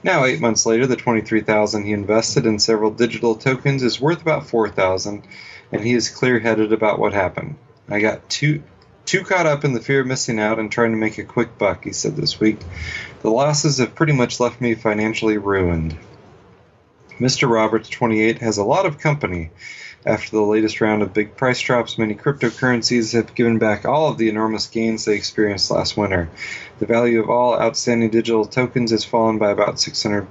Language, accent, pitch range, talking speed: English, American, 110-125 Hz, 190 wpm